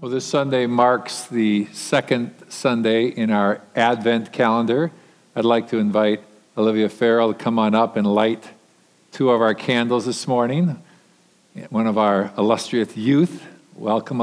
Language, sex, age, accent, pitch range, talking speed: English, male, 50-69, American, 115-145 Hz, 150 wpm